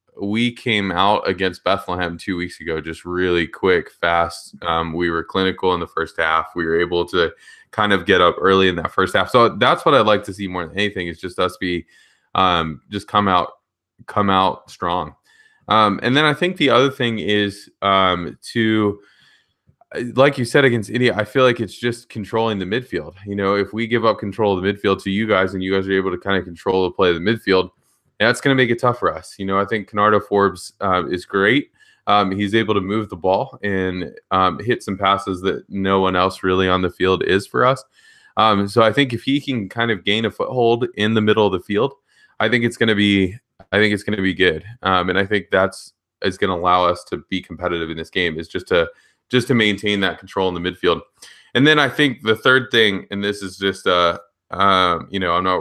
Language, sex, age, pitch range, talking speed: English, male, 20-39, 95-115 Hz, 235 wpm